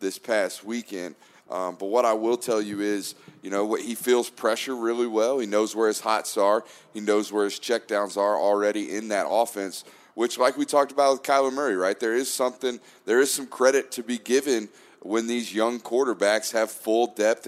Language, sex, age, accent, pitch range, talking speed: English, male, 30-49, American, 105-120 Hz, 210 wpm